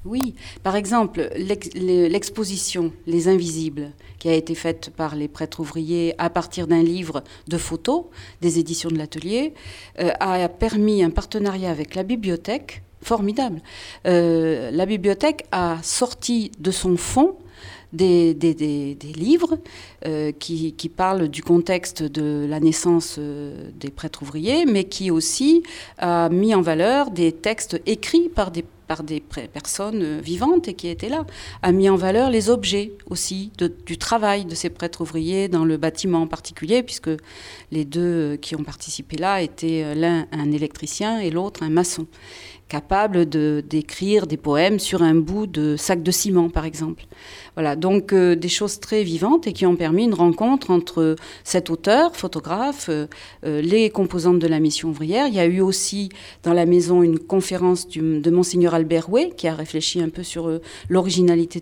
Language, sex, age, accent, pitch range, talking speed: French, female, 40-59, French, 160-200 Hz, 165 wpm